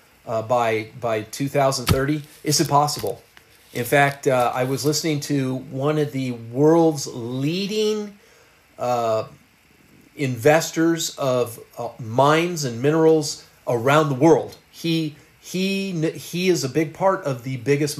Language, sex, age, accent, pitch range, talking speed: English, male, 40-59, American, 120-160 Hz, 130 wpm